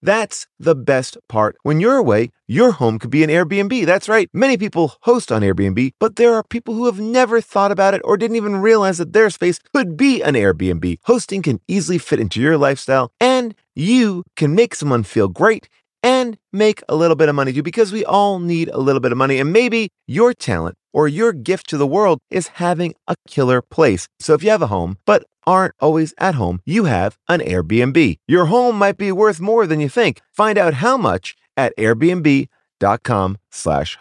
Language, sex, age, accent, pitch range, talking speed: English, male, 30-49, American, 140-220 Hz, 210 wpm